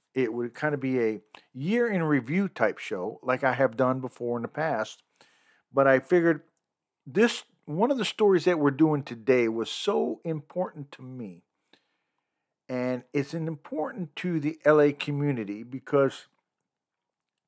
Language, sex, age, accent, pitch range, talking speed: English, male, 50-69, American, 120-165 Hz, 145 wpm